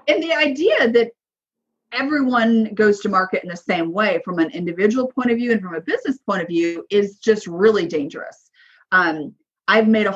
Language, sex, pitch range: English, female, 190-235 Hz